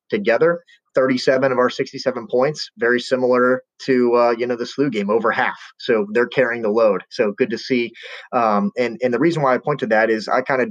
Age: 30-49